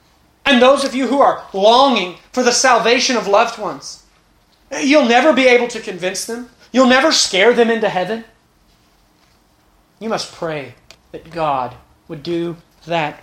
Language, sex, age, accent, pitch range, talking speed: English, male, 30-49, American, 155-210 Hz, 150 wpm